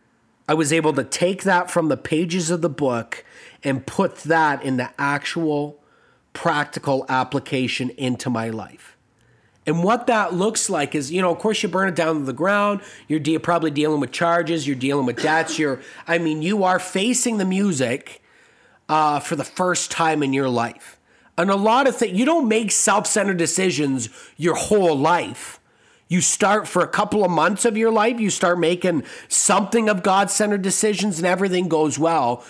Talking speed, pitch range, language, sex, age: 185 wpm, 150-205 Hz, English, male, 30-49